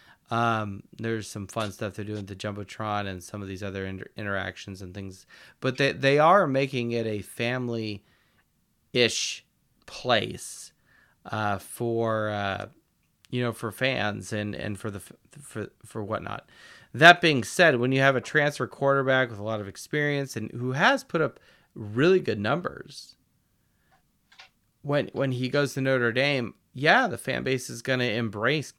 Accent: American